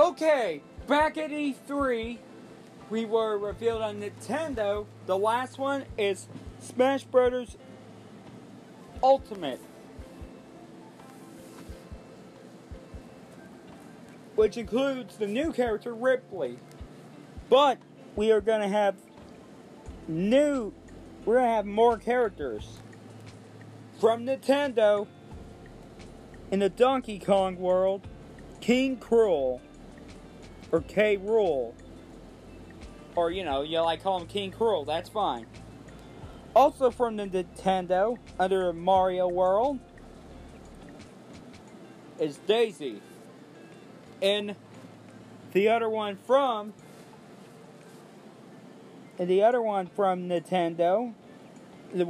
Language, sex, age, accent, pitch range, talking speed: English, male, 40-59, American, 175-240 Hz, 90 wpm